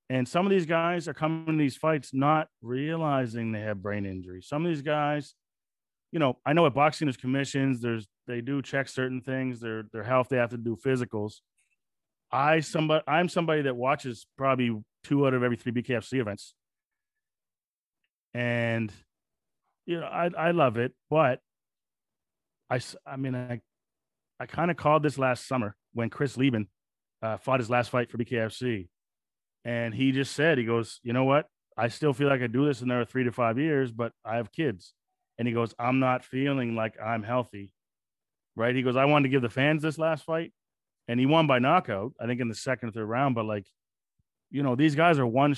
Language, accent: English, American